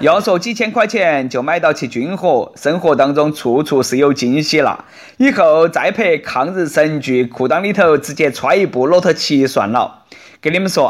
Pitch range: 160-235 Hz